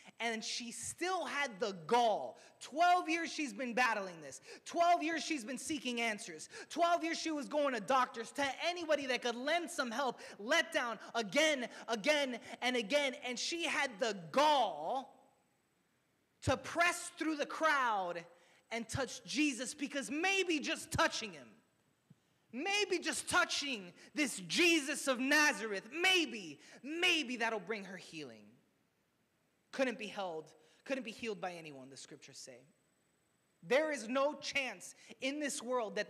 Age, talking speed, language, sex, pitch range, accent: 20-39, 150 wpm, English, male, 235-320 Hz, American